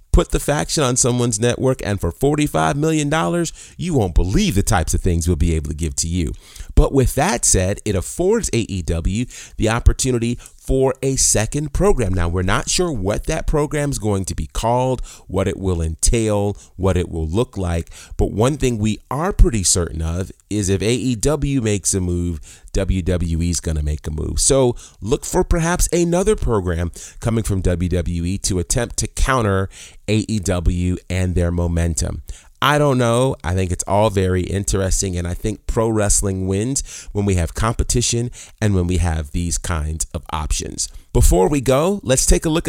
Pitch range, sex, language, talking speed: 90-125 Hz, male, English, 185 wpm